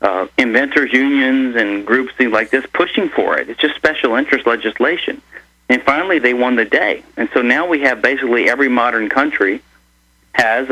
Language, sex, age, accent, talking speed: English, male, 40-59, American, 175 wpm